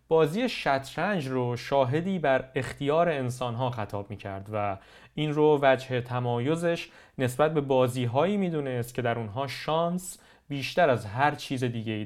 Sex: male